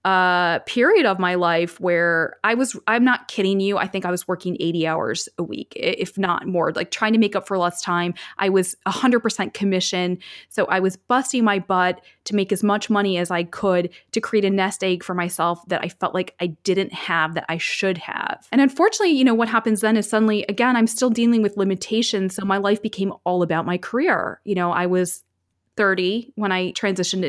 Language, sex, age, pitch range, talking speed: English, female, 20-39, 180-220 Hz, 220 wpm